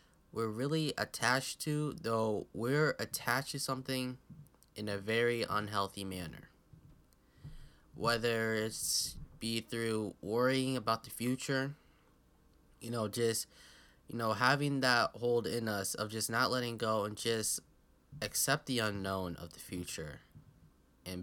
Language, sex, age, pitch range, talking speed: English, male, 10-29, 95-120 Hz, 130 wpm